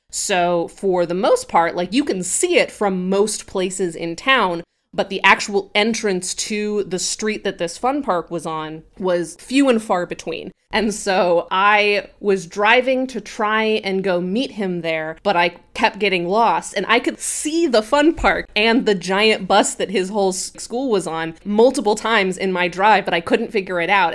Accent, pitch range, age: American, 180-215 Hz, 20-39